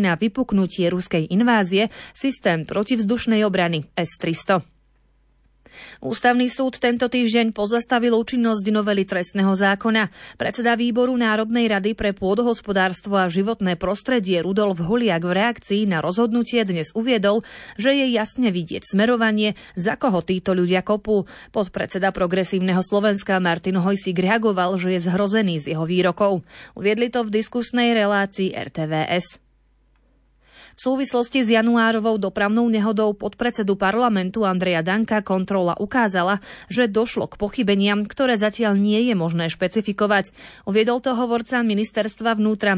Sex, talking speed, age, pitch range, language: female, 125 wpm, 30-49, 185-225 Hz, Slovak